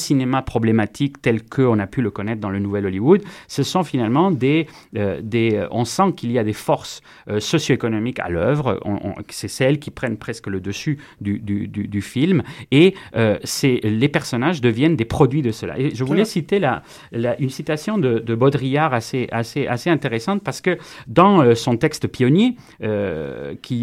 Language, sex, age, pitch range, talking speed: French, male, 40-59, 110-155 Hz, 185 wpm